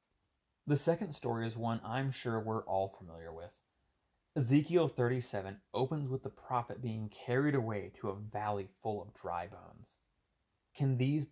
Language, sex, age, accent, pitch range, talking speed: English, male, 30-49, American, 105-130 Hz, 155 wpm